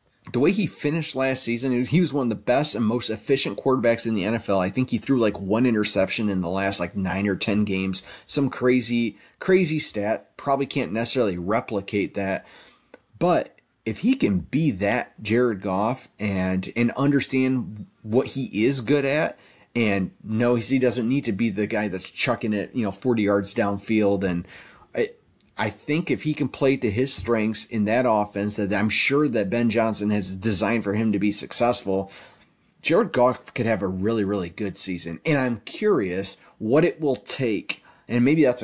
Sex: male